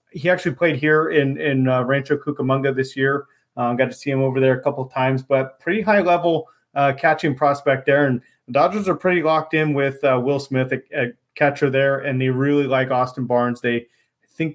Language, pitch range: English, 130-150 Hz